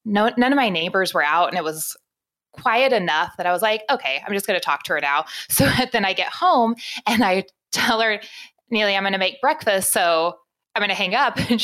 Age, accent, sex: 20-39, American, female